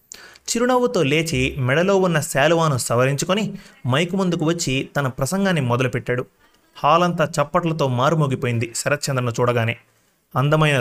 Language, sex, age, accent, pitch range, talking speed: Telugu, male, 30-49, native, 125-160 Hz, 105 wpm